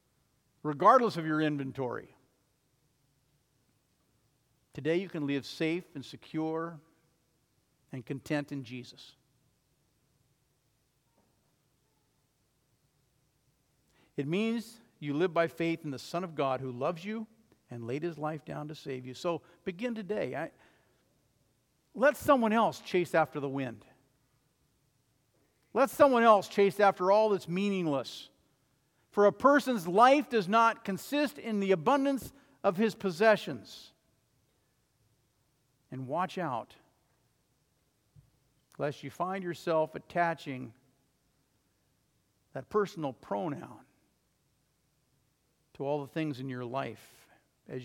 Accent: American